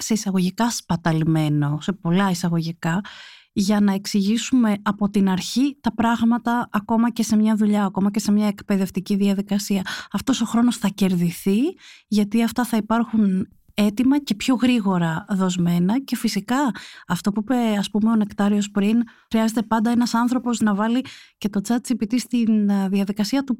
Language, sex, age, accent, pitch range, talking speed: Greek, female, 30-49, native, 195-240 Hz, 155 wpm